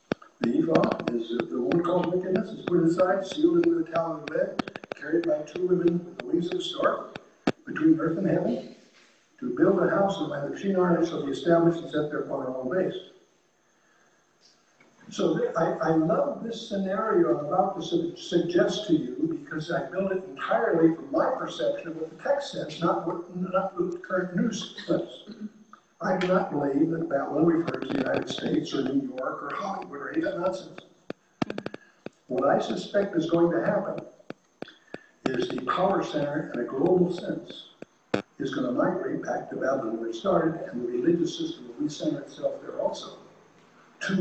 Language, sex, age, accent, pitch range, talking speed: English, male, 60-79, American, 170-240 Hz, 185 wpm